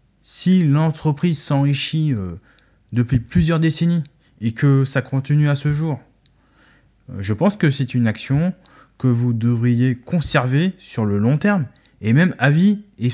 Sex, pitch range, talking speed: male, 110-140 Hz, 145 wpm